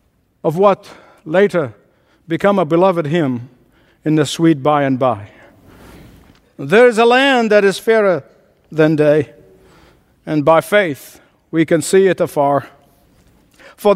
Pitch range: 140-195 Hz